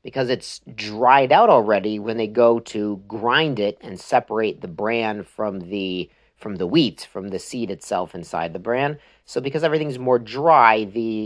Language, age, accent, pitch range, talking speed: English, 40-59, American, 110-135 Hz, 175 wpm